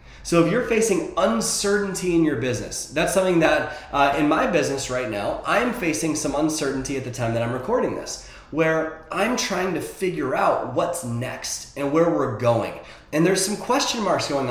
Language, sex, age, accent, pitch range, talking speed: English, male, 20-39, American, 130-180 Hz, 190 wpm